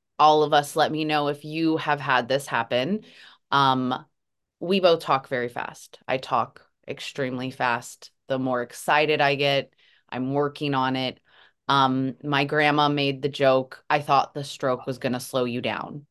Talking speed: 175 wpm